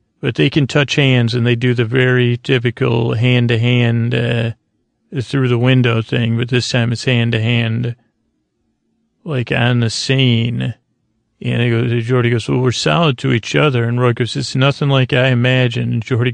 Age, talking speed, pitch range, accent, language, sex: 40-59, 190 wpm, 120-135 Hz, American, English, male